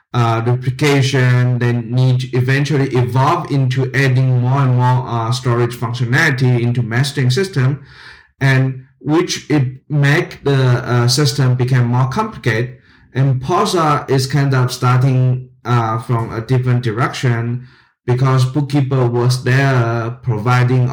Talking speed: 125 wpm